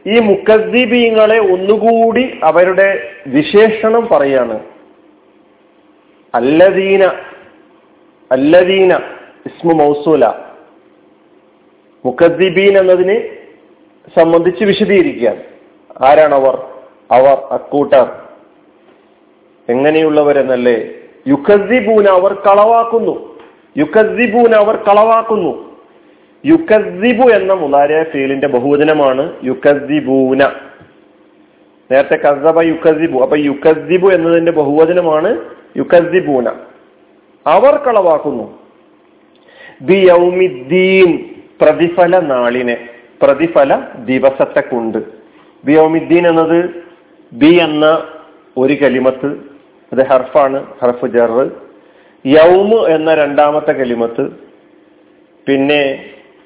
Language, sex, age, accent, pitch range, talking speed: Malayalam, male, 40-59, native, 140-215 Hz, 55 wpm